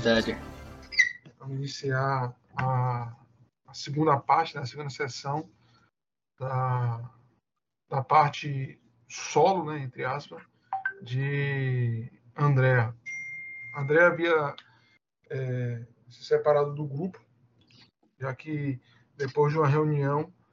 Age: 20-39